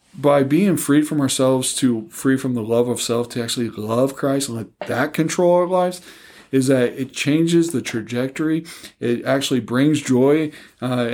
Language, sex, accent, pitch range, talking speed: English, male, American, 115-140 Hz, 180 wpm